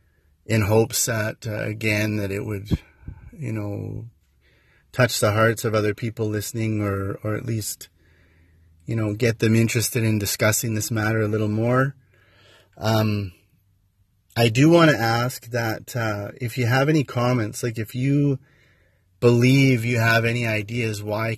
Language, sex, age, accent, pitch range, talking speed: English, male, 30-49, American, 100-115 Hz, 155 wpm